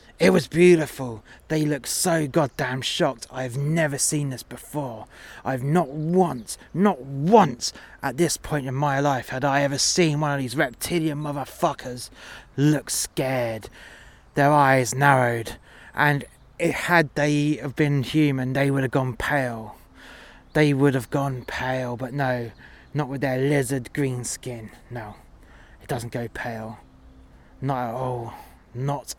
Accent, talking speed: British, 150 wpm